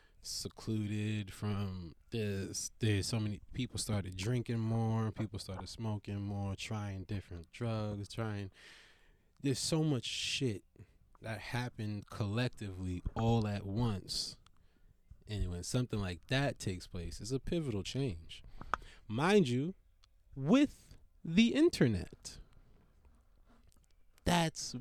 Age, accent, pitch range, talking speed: 20-39, American, 95-125 Hz, 110 wpm